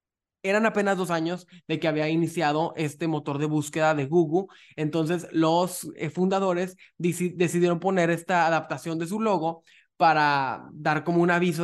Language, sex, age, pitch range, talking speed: Spanish, male, 20-39, 155-185 Hz, 150 wpm